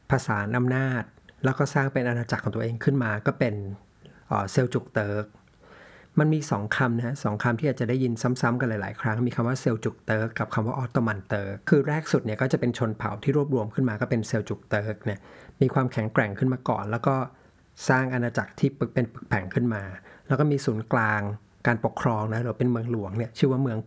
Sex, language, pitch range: male, Thai, 110-135 Hz